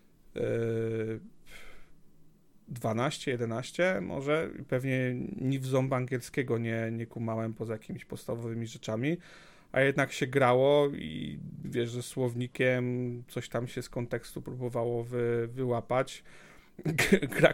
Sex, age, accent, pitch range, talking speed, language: male, 40-59, native, 120-135 Hz, 110 wpm, Polish